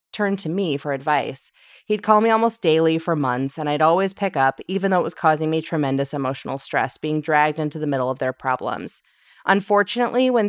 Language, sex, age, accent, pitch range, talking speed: English, female, 20-39, American, 145-190 Hz, 205 wpm